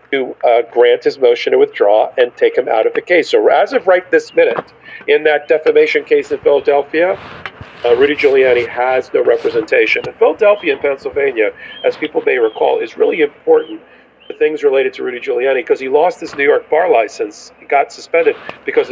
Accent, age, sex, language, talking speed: American, 40-59, male, English, 190 wpm